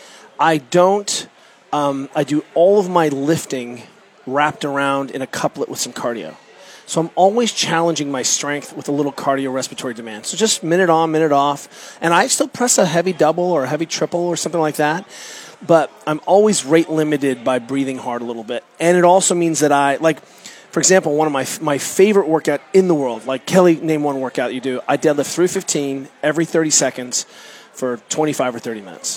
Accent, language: American, English